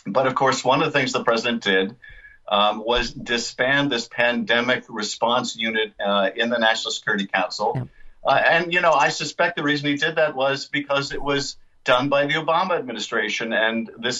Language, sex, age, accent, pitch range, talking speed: English, male, 50-69, American, 115-140 Hz, 190 wpm